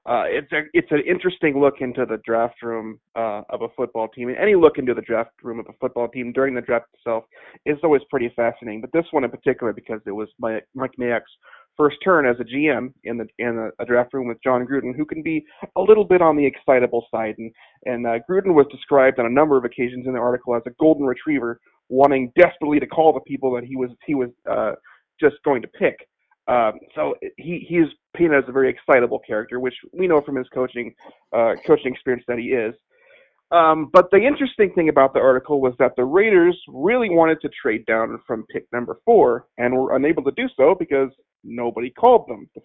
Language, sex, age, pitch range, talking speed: English, male, 30-49, 125-165 Hz, 225 wpm